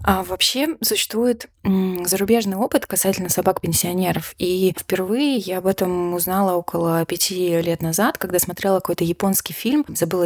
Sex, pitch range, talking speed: female, 165-200 Hz, 140 wpm